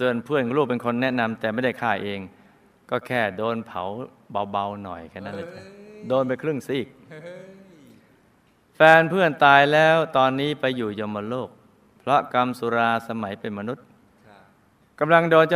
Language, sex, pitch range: Thai, male, 110-145 Hz